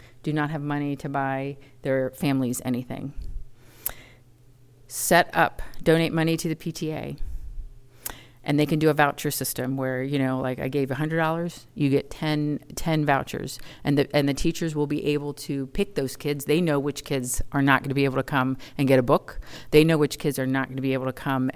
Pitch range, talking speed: 130-160 Hz, 205 wpm